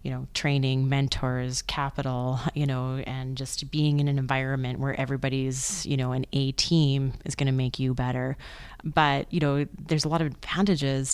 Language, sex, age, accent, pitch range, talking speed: English, female, 30-49, American, 135-165 Hz, 185 wpm